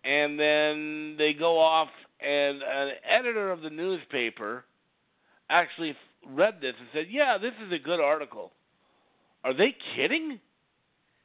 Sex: male